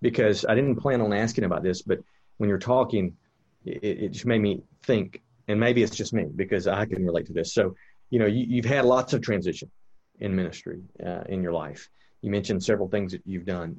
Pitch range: 100-135 Hz